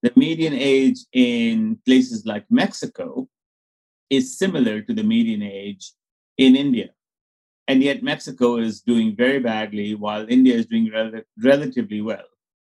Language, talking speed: English, 135 wpm